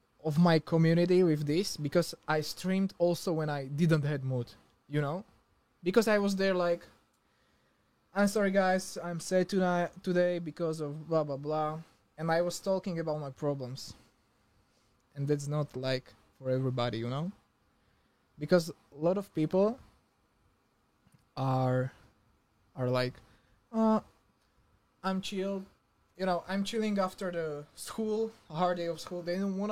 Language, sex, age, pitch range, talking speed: Slovak, male, 20-39, 140-185 Hz, 150 wpm